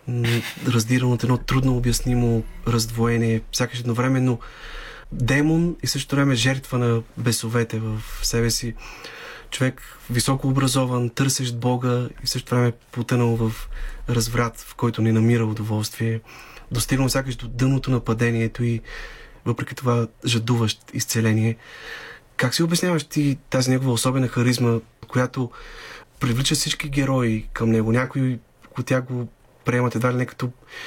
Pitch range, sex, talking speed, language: 115-130 Hz, male, 130 wpm, Bulgarian